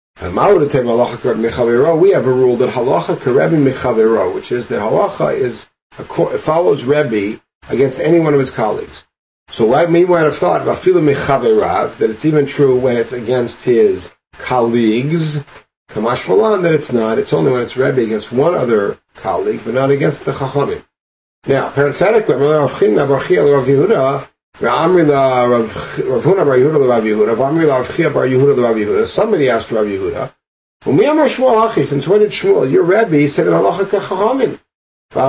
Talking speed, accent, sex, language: 110 wpm, American, male, English